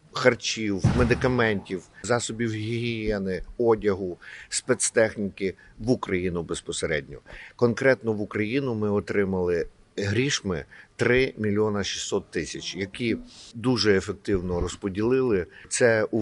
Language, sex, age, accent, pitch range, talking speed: Ukrainian, male, 50-69, native, 95-115 Hz, 90 wpm